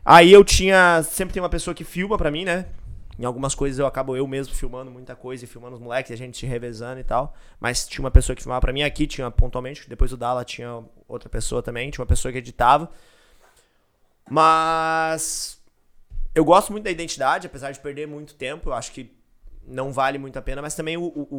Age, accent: 20-39, Brazilian